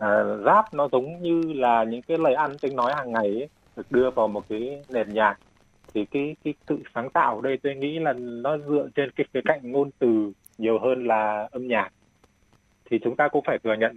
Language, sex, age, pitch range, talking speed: Vietnamese, male, 20-39, 110-150 Hz, 230 wpm